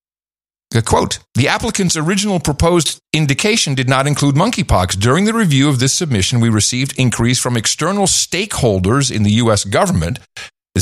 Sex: male